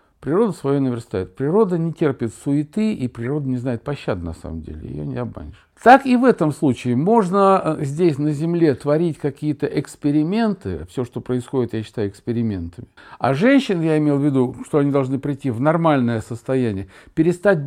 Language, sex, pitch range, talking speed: Russian, male, 120-165 Hz, 170 wpm